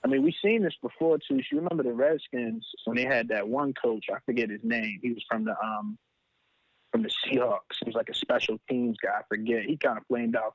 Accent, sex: American, male